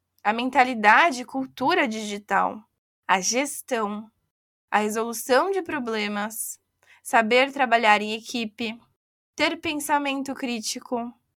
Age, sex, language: 10-29, female, Portuguese